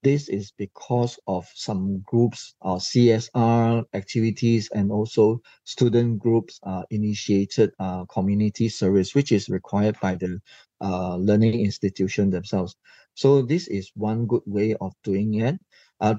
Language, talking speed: English, 135 wpm